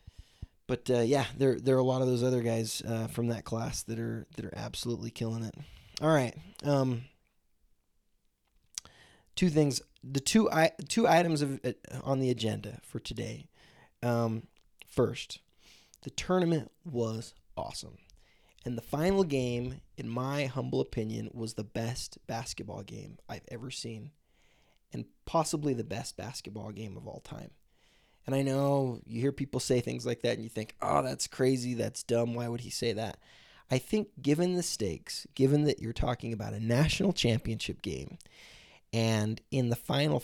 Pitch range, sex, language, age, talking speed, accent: 115-140 Hz, male, English, 20-39, 165 wpm, American